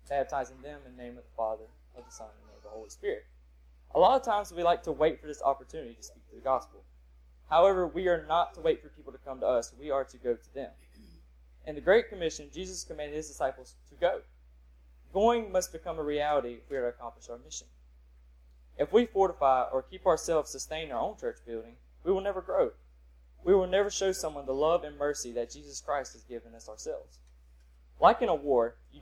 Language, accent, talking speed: English, American, 225 wpm